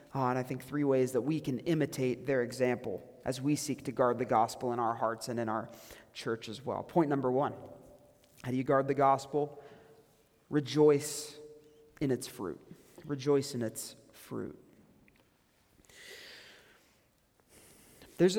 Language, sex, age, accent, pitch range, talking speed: English, male, 30-49, American, 135-185 Hz, 145 wpm